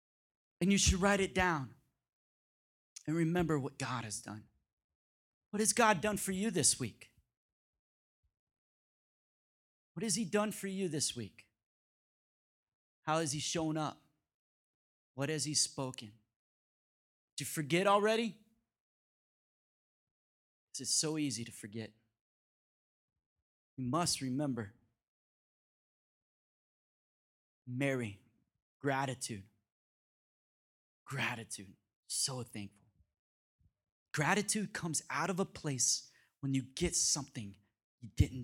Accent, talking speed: American, 105 wpm